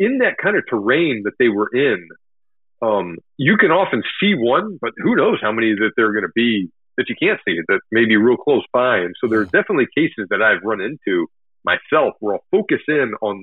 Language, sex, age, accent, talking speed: English, male, 40-59, American, 230 wpm